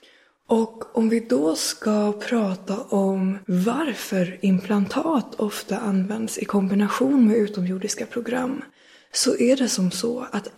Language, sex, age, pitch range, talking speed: Swedish, female, 20-39, 200-240 Hz, 125 wpm